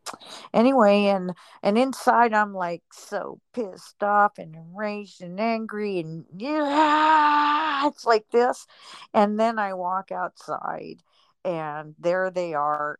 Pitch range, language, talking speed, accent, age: 145-185 Hz, English, 125 wpm, American, 50-69